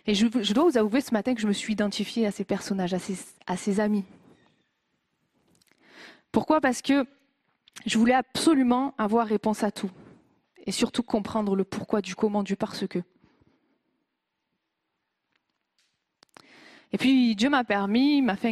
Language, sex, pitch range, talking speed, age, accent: French, female, 210-275 Hz, 155 wpm, 20-39, French